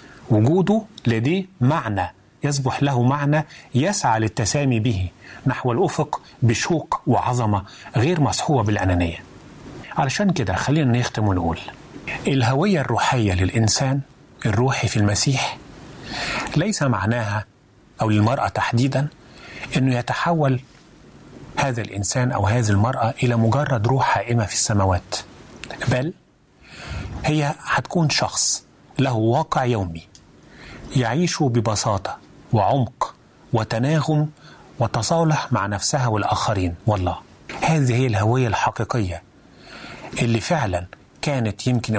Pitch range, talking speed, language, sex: 105-135 Hz, 100 wpm, Arabic, male